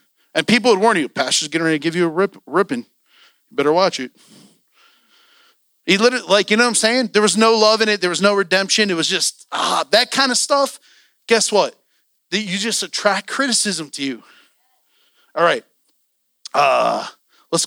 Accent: American